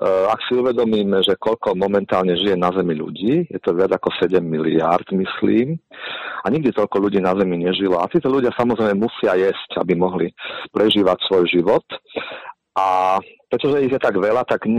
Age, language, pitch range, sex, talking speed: 40-59, Slovak, 90-110 Hz, male, 170 wpm